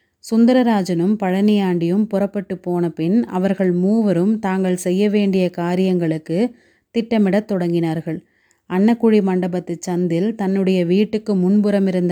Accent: native